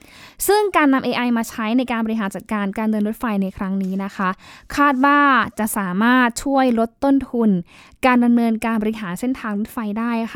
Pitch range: 200-255 Hz